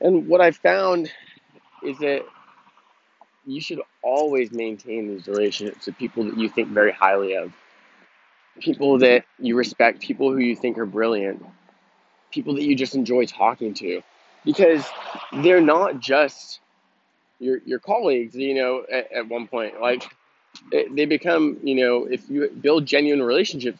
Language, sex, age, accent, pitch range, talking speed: English, male, 20-39, American, 120-160 Hz, 150 wpm